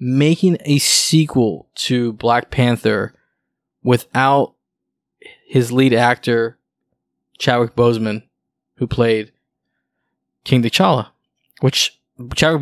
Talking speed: 85 wpm